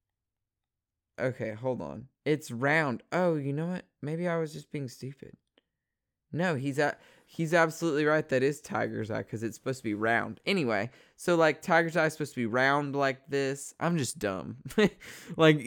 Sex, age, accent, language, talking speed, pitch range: male, 20-39, American, English, 180 wpm, 115-145 Hz